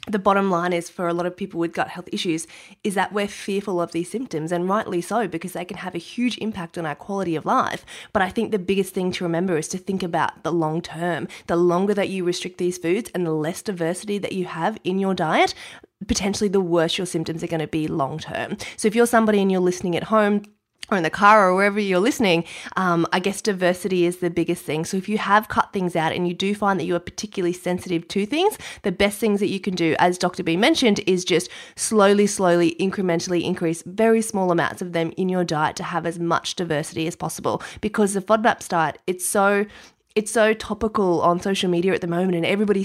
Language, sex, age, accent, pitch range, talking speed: English, female, 20-39, Australian, 170-205 Hz, 240 wpm